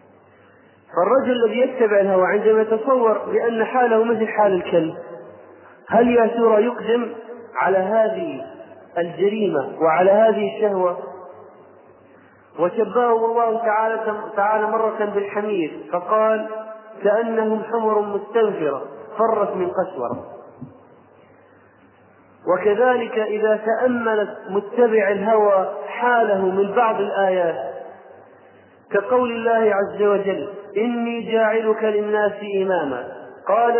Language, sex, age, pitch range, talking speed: Arabic, male, 30-49, 205-235 Hz, 90 wpm